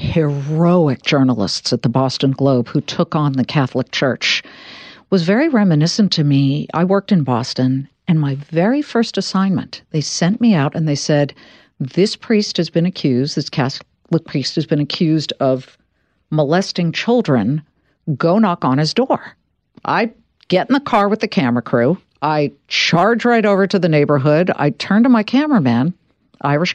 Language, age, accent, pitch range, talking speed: English, 50-69, American, 145-200 Hz, 165 wpm